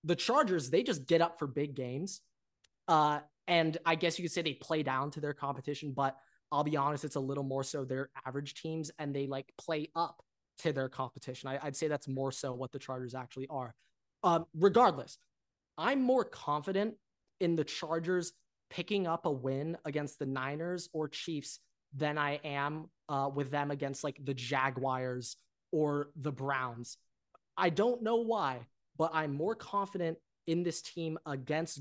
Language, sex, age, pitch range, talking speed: English, male, 20-39, 135-165 Hz, 175 wpm